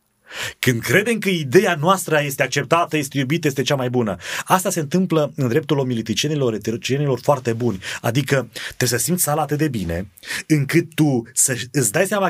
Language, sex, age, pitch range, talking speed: Romanian, male, 30-49, 140-190 Hz, 175 wpm